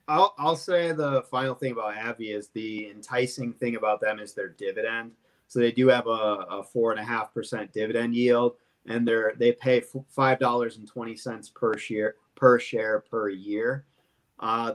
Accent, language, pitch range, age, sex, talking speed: American, English, 110-135 Hz, 30-49, male, 180 wpm